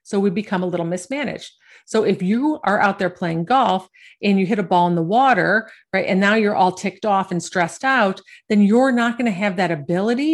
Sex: female